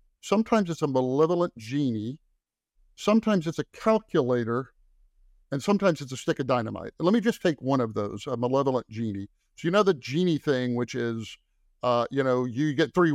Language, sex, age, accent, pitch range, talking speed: English, male, 50-69, American, 120-170 Hz, 185 wpm